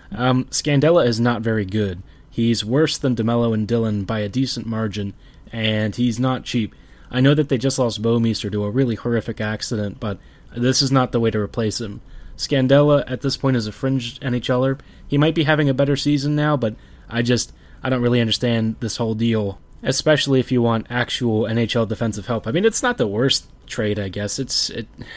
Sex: male